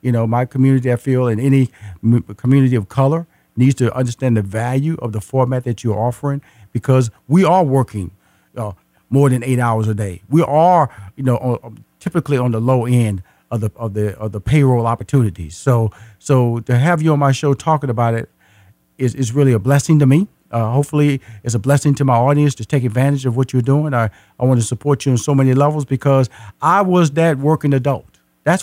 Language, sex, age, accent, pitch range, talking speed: English, male, 50-69, American, 120-155 Hz, 210 wpm